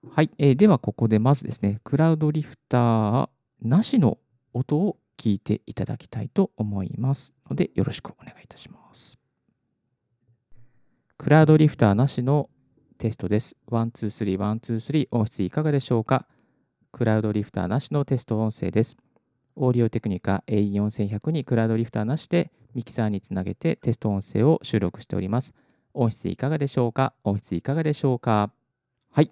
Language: Japanese